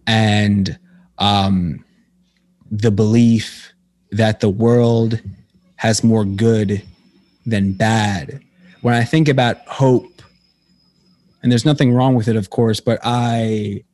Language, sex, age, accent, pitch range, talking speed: English, male, 30-49, American, 110-130 Hz, 115 wpm